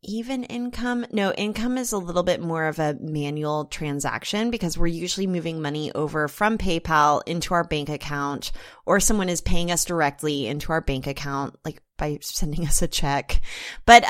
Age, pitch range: 20-39, 155-215 Hz